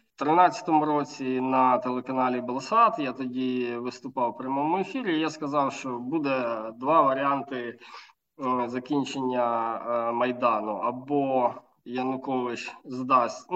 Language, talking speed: Ukrainian, 110 wpm